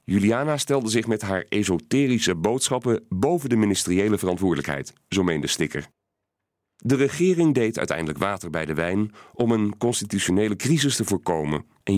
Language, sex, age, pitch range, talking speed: Dutch, male, 40-59, 105-155 Hz, 145 wpm